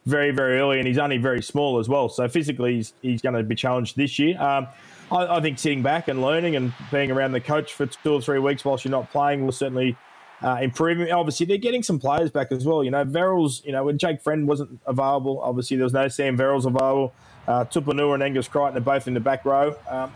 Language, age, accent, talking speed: English, 20-39, Australian, 250 wpm